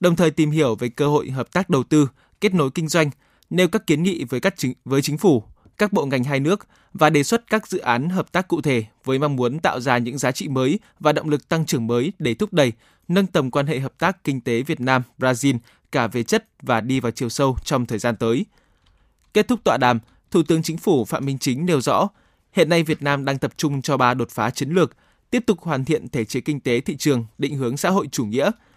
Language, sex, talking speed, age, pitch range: Vietnamese, male, 255 wpm, 20-39, 125-160 Hz